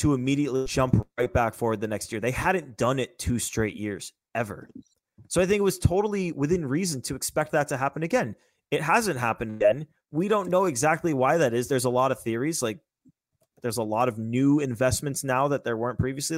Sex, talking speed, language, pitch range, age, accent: male, 215 wpm, English, 115-155 Hz, 20-39, American